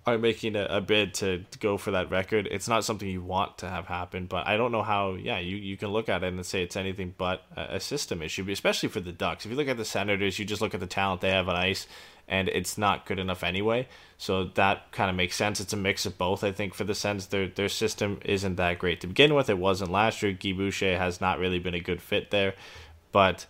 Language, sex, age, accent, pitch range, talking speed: English, male, 20-39, American, 90-100 Hz, 270 wpm